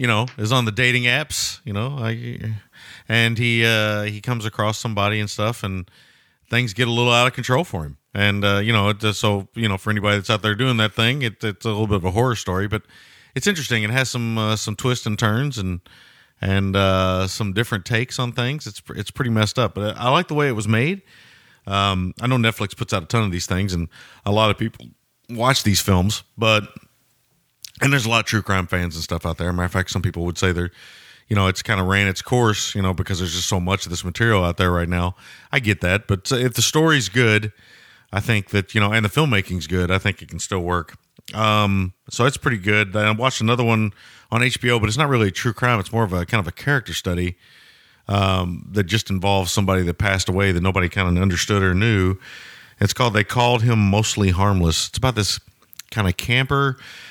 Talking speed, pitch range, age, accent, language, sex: 235 wpm, 95-120 Hz, 40-59, American, English, male